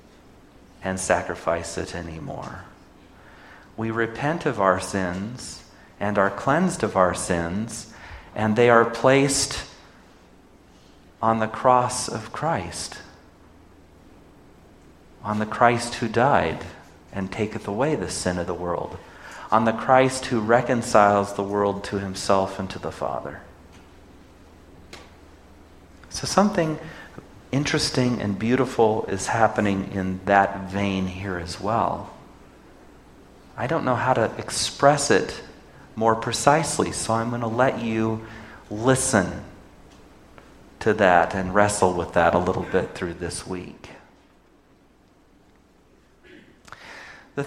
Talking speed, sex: 115 wpm, male